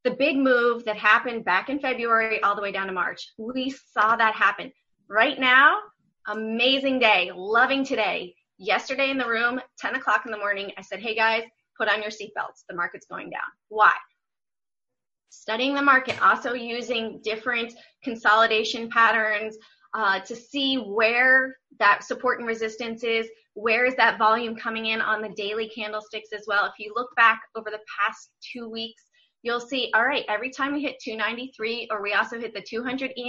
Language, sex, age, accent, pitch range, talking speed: English, female, 20-39, American, 215-255 Hz, 180 wpm